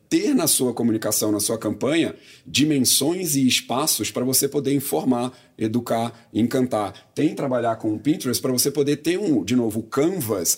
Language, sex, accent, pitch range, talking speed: Portuguese, male, Brazilian, 110-135 Hz, 175 wpm